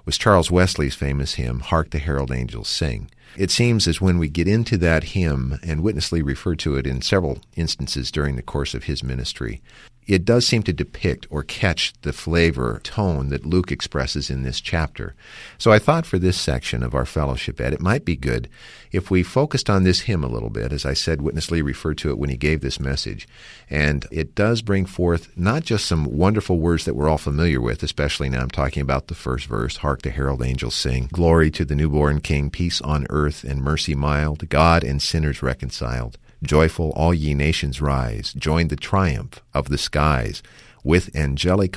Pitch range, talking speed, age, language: 70-90 Hz, 200 wpm, 50-69, English